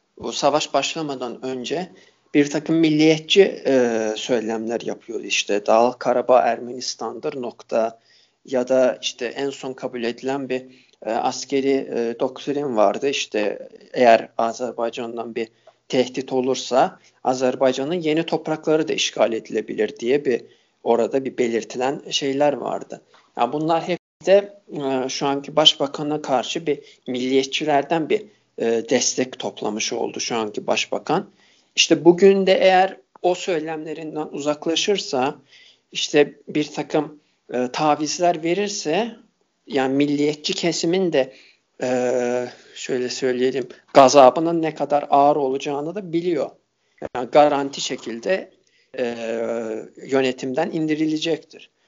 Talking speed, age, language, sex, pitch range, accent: 110 wpm, 40-59, Turkish, male, 125-165 Hz, native